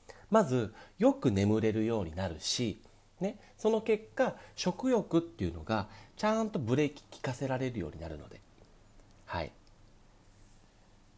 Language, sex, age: Japanese, male, 40-59